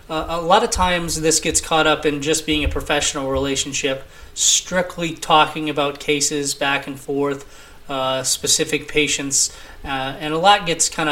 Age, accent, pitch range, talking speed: 20-39, American, 135-155 Hz, 165 wpm